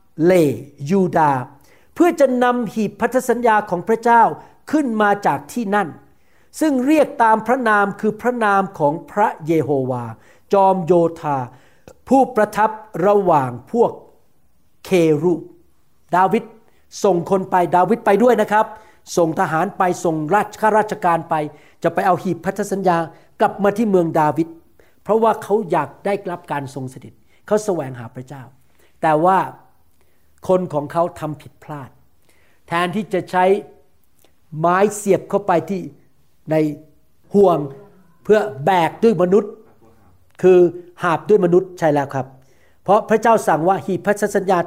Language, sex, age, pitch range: Thai, male, 60-79, 145-205 Hz